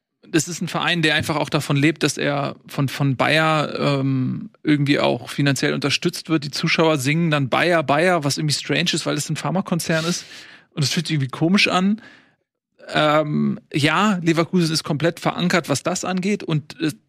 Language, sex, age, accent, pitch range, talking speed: German, male, 30-49, German, 145-175 Hz, 185 wpm